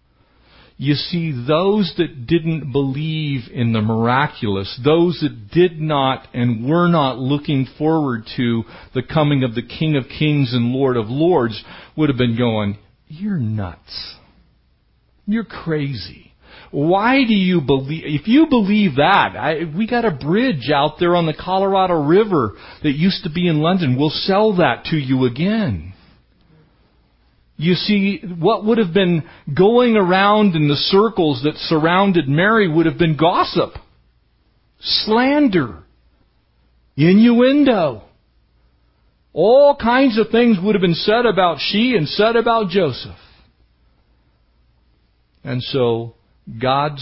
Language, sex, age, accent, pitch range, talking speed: English, male, 40-59, American, 110-185 Hz, 135 wpm